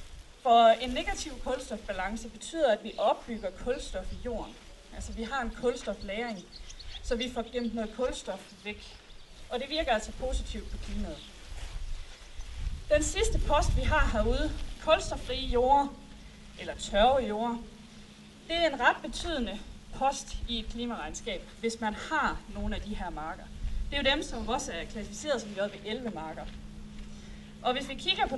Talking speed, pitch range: 160 wpm, 200-265 Hz